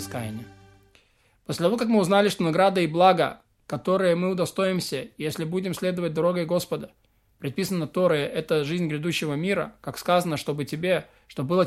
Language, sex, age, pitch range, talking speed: Russian, male, 20-39, 145-180 Hz, 150 wpm